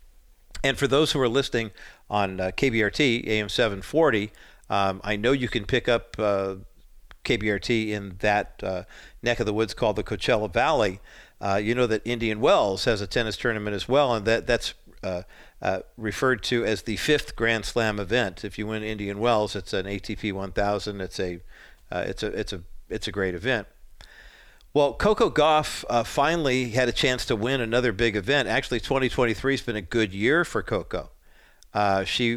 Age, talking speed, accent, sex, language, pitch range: 50-69, 185 wpm, American, male, English, 100-125 Hz